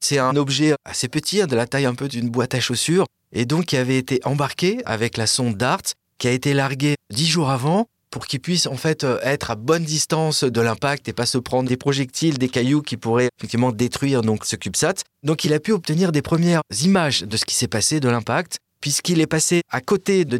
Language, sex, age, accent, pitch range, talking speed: French, male, 30-49, French, 120-155 Hz, 230 wpm